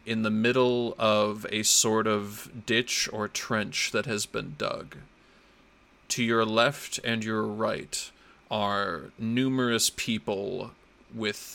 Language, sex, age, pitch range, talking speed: English, male, 30-49, 100-115 Hz, 125 wpm